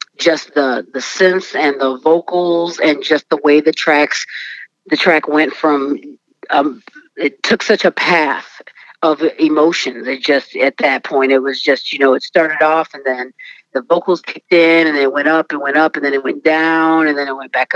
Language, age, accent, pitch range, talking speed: English, 40-59, American, 140-160 Hz, 210 wpm